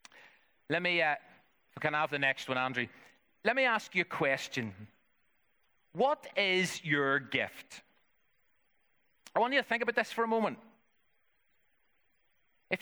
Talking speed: 145 wpm